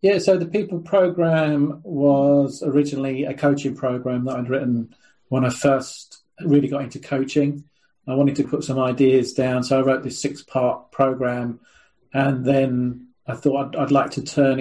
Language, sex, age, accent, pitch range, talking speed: English, male, 40-59, British, 130-145 Hz, 175 wpm